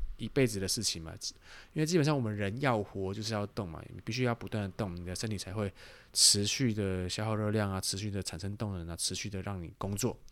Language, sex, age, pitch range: Chinese, male, 20-39, 100-125 Hz